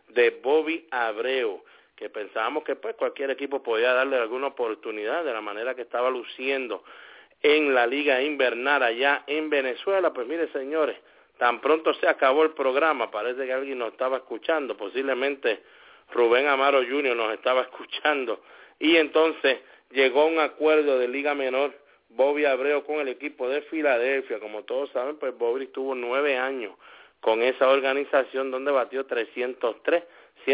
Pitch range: 125-155 Hz